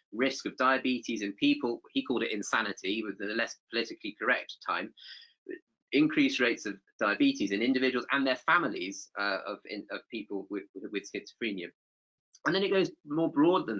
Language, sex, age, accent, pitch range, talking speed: English, male, 30-49, British, 110-150 Hz, 170 wpm